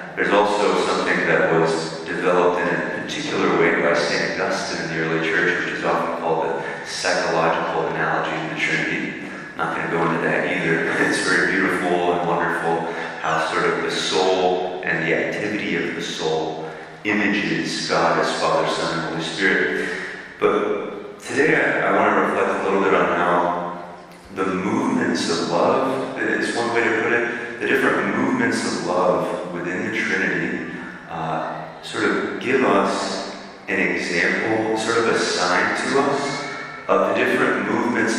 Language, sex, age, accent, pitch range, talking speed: English, male, 30-49, American, 80-90 Hz, 170 wpm